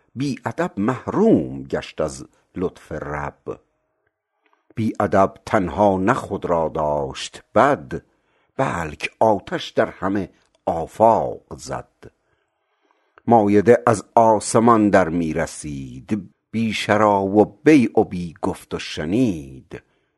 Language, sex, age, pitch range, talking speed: Persian, male, 60-79, 85-110 Hz, 90 wpm